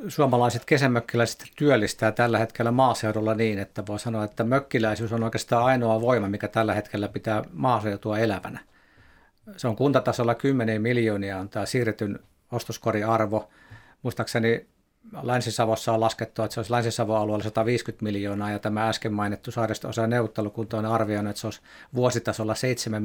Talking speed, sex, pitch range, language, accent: 150 wpm, male, 105-120 Hz, Finnish, native